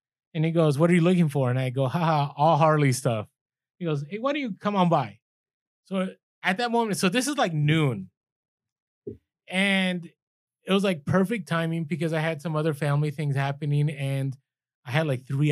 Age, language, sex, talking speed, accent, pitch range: 20-39, English, male, 200 wpm, American, 135-170 Hz